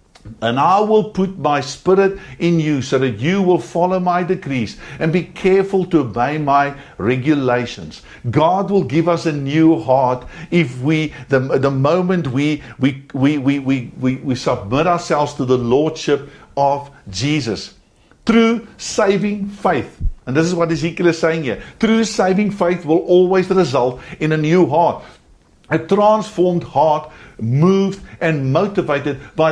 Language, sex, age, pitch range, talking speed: English, male, 60-79, 140-185 Hz, 155 wpm